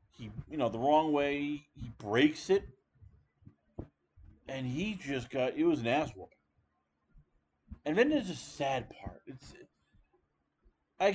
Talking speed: 145 wpm